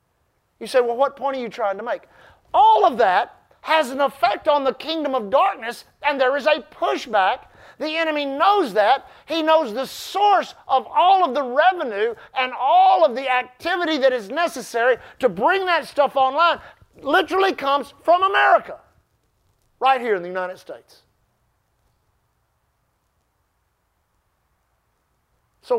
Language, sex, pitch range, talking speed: English, male, 255-340 Hz, 145 wpm